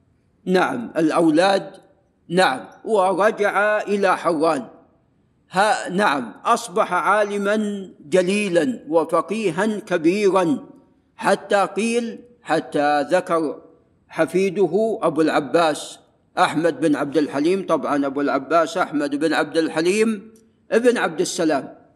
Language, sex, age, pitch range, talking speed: Arabic, male, 50-69, 165-235 Hz, 90 wpm